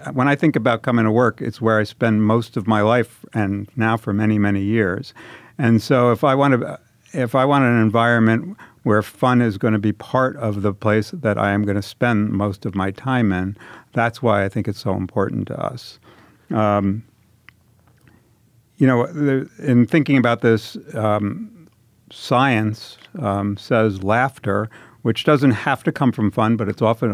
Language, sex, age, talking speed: English, male, 50-69, 185 wpm